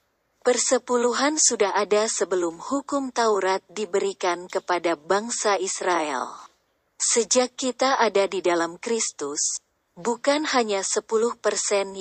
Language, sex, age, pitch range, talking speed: Indonesian, female, 30-49, 185-240 Hz, 95 wpm